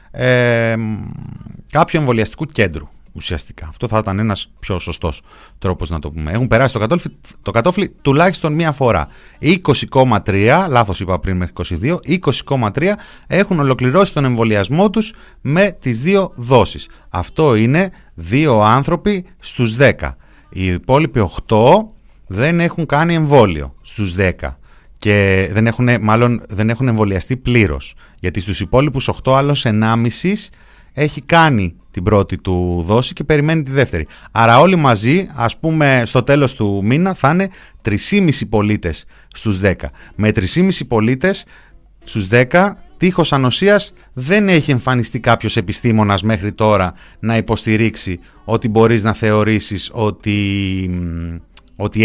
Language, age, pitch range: Greek, 30-49, 100-140 Hz